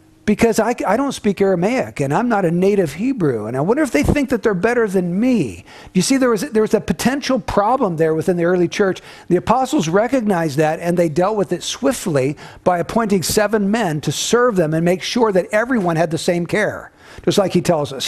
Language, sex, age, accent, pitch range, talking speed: English, male, 50-69, American, 150-200 Hz, 225 wpm